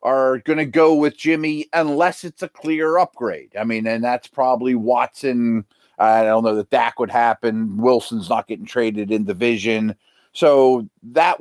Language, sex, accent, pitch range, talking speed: English, male, American, 120-165 Hz, 170 wpm